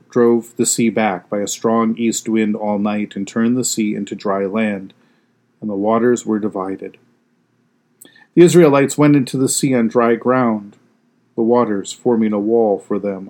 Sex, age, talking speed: male, 40-59, 175 wpm